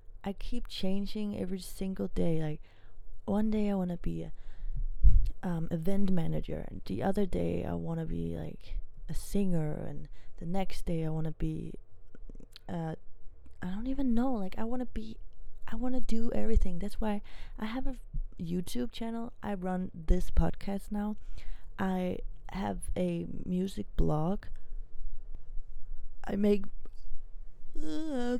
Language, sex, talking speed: English, female, 150 wpm